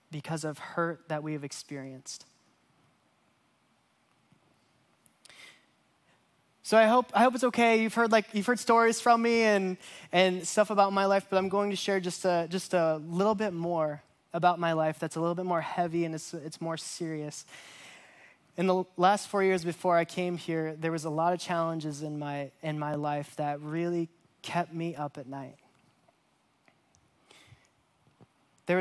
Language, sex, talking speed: English, male, 170 wpm